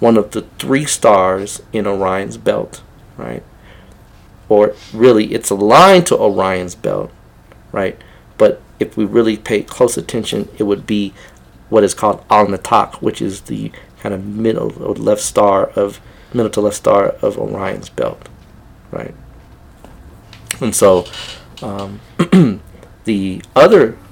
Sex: male